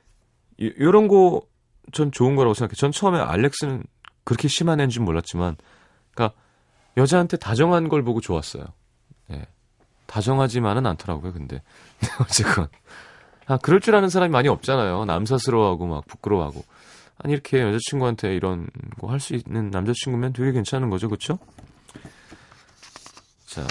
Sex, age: male, 30-49